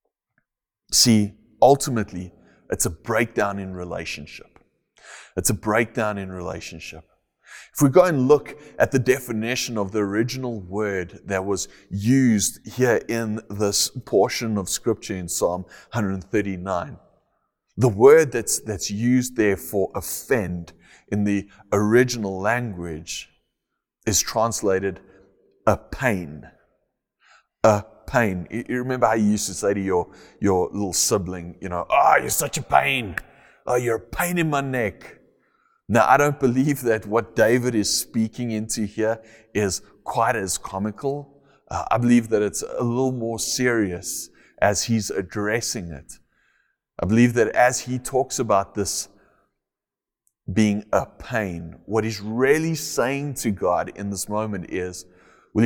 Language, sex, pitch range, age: English, male, 95-125 Hz, 30-49